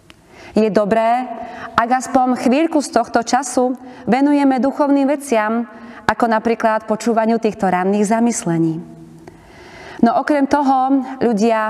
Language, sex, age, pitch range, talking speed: Slovak, female, 30-49, 205-255 Hz, 110 wpm